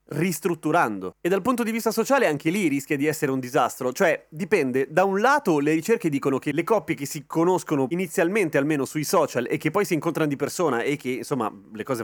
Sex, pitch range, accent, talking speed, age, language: male, 130-180 Hz, native, 220 wpm, 30-49, Italian